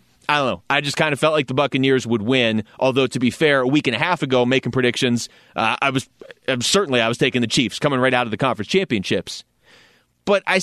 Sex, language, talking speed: male, English, 245 wpm